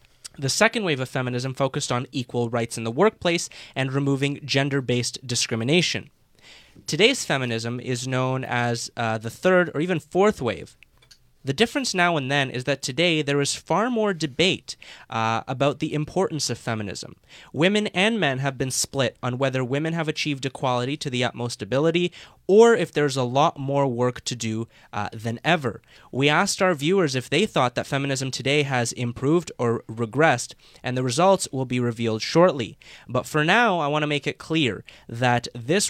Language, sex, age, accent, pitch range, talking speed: English, male, 20-39, American, 125-170 Hz, 180 wpm